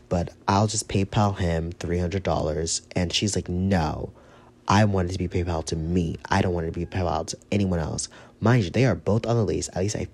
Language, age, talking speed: English, 30-49, 230 wpm